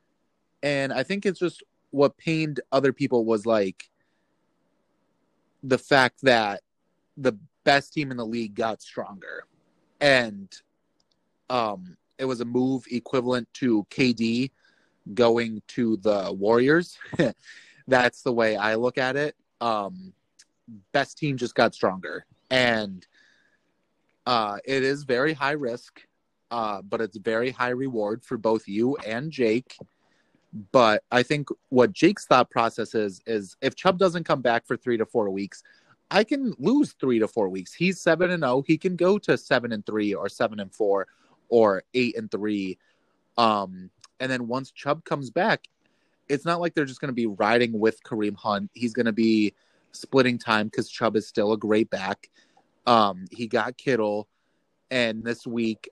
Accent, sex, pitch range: American, male, 110-135 Hz